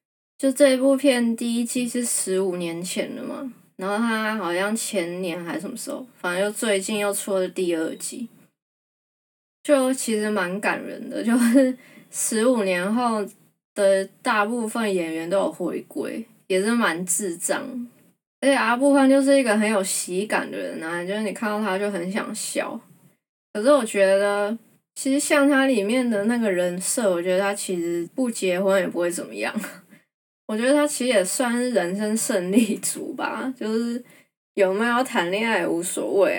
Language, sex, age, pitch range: Chinese, female, 20-39, 190-255 Hz